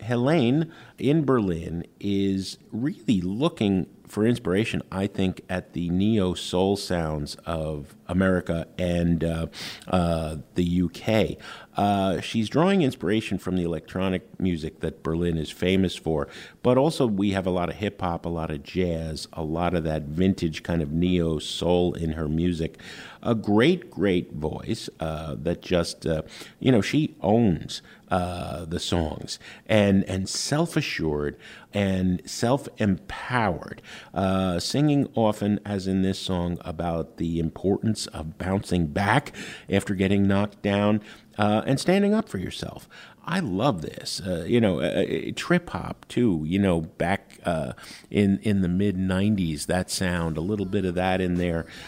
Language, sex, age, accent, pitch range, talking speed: English, male, 50-69, American, 85-105 Hz, 150 wpm